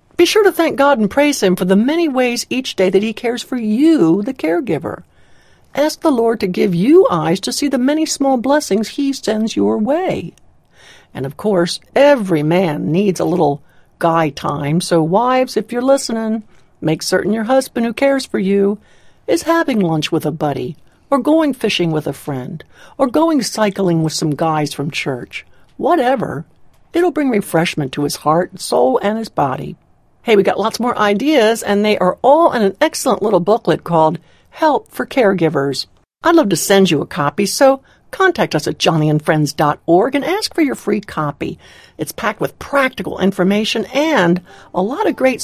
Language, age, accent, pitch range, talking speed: English, 60-79, American, 170-275 Hz, 185 wpm